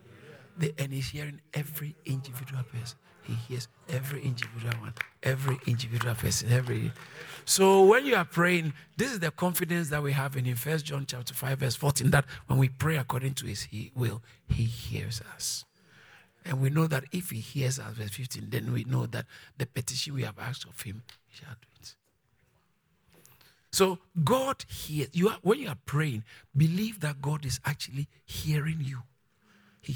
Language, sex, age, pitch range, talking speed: English, male, 50-69, 130-190 Hz, 180 wpm